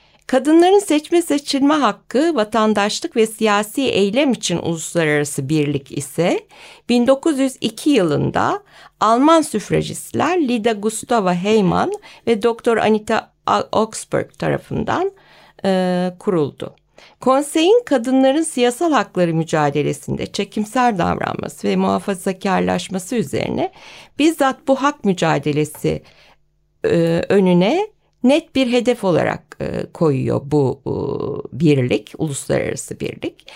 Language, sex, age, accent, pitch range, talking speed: Turkish, female, 60-79, native, 185-265 Hz, 95 wpm